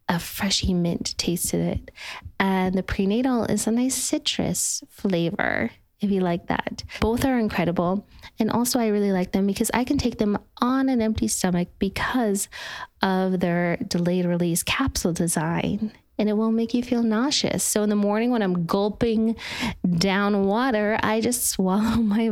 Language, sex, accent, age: English, female, American, 20-39